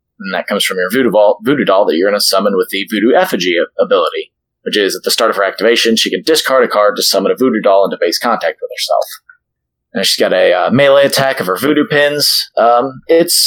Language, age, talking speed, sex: English, 30-49, 250 wpm, male